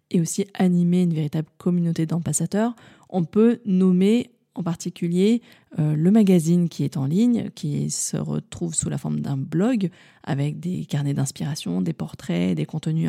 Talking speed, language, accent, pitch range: 160 wpm, French, French, 160-205 Hz